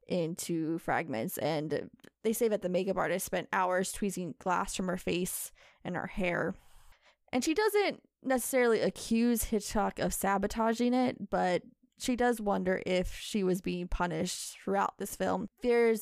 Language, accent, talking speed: English, American, 155 wpm